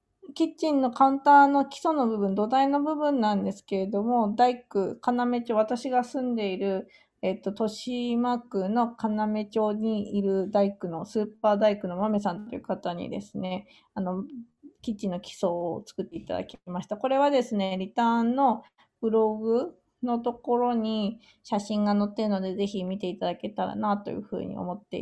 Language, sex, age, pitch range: Japanese, female, 20-39, 200-260 Hz